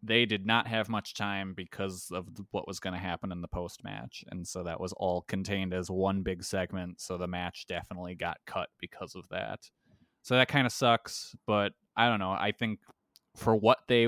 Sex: male